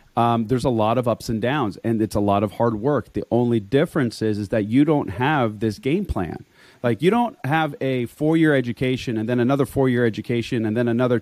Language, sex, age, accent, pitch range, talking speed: English, male, 30-49, American, 110-140 Hz, 225 wpm